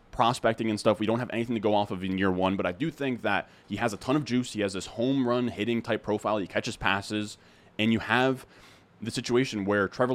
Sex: male